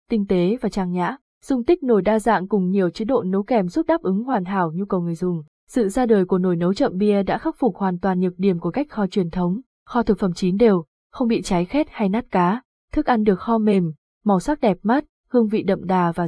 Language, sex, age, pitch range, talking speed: Vietnamese, female, 20-39, 190-235 Hz, 260 wpm